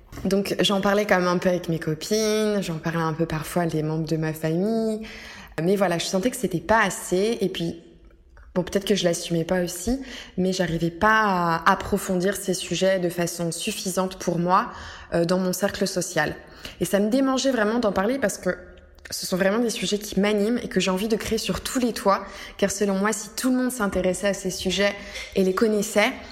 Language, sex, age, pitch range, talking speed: French, female, 20-39, 170-210 Hz, 220 wpm